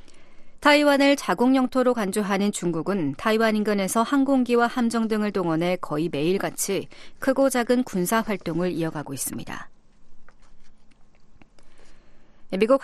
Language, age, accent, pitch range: Korean, 40-59, native, 185-235 Hz